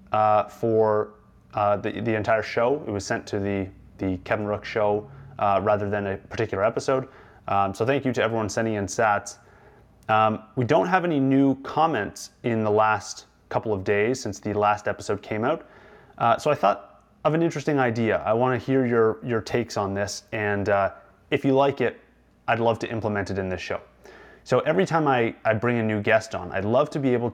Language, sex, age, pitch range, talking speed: English, male, 30-49, 105-125 Hz, 210 wpm